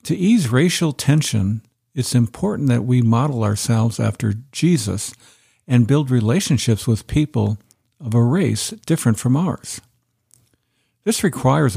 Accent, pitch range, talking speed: American, 110-135 Hz, 125 wpm